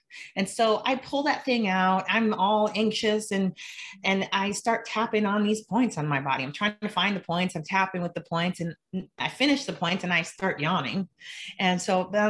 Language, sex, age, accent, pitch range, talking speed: English, female, 30-49, American, 170-220 Hz, 215 wpm